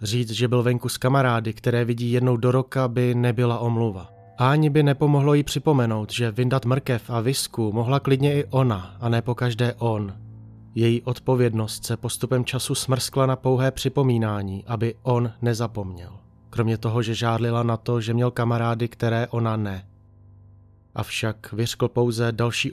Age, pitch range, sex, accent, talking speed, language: 30-49, 105-125 Hz, male, native, 160 wpm, Czech